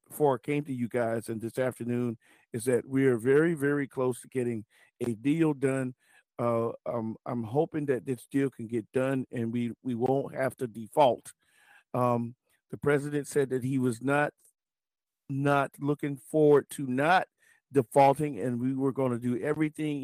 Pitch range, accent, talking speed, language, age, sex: 120-145 Hz, American, 175 wpm, English, 50-69, male